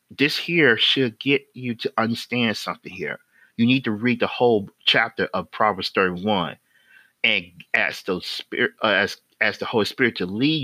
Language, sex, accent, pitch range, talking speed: English, male, American, 110-135 Hz, 150 wpm